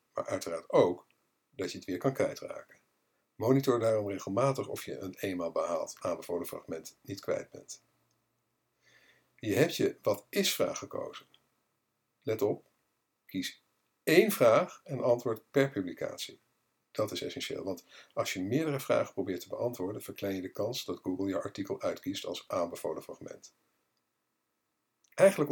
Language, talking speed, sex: Dutch, 145 wpm, male